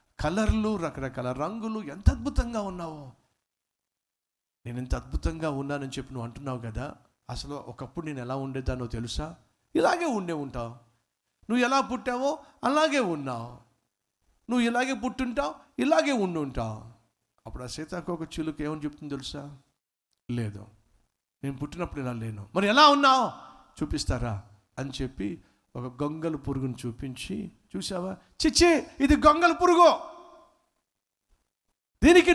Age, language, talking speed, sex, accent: 60-79, Telugu, 115 wpm, male, native